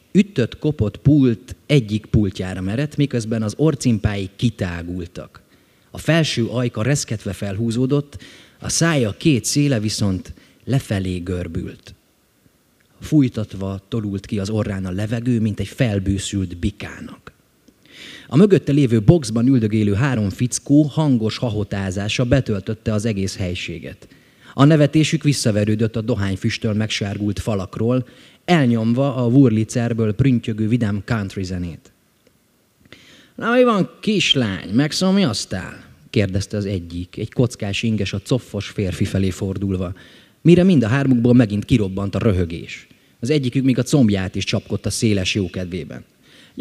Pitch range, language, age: 100-140 Hz, Hungarian, 30-49